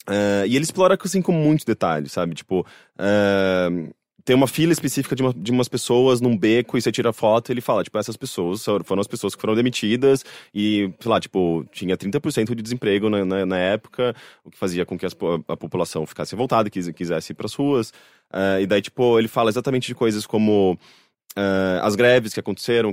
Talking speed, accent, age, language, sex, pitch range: 210 wpm, Brazilian, 20-39, English, male, 95-125 Hz